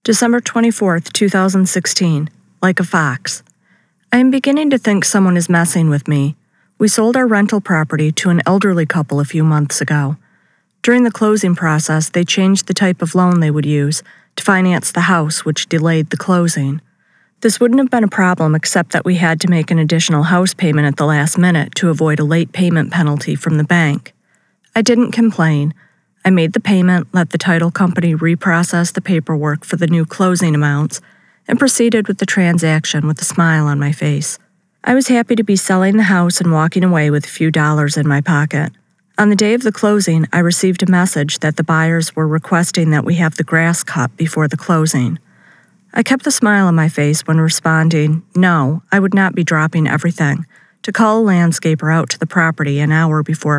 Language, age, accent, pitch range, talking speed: English, 40-59, American, 155-190 Hz, 200 wpm